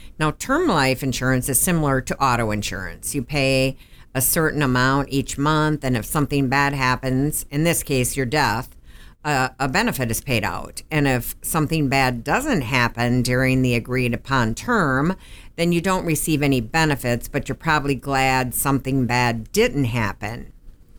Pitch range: 120-145 Hz